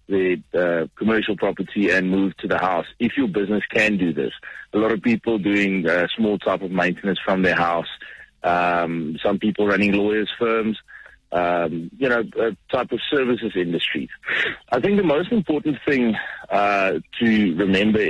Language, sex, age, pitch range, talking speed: English, male, 30-49, 95-115 Hz, 165 wpm